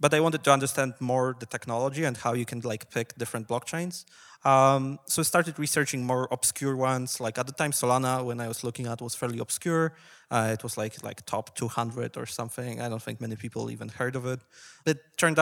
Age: 20-39